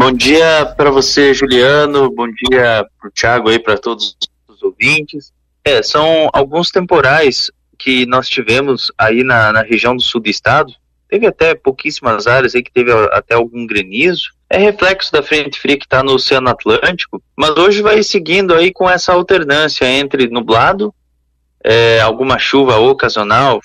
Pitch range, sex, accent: 120-170 Hz, male, Brazilian